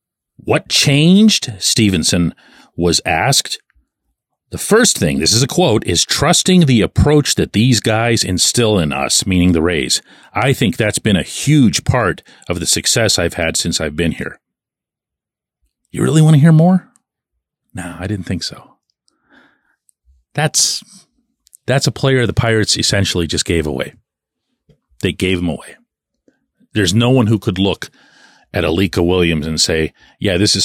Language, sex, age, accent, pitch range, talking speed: English, male, 40-59, American, 85-120 Hz, 155 wpm